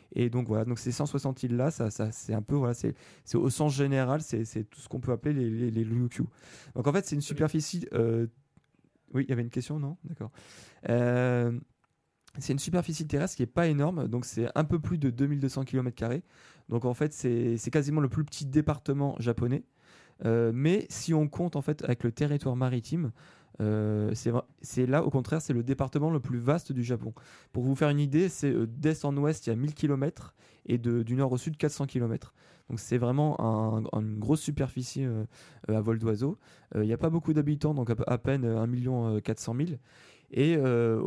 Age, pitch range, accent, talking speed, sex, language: 20-39, 120-150 Hz, French, 210 wpm, male, French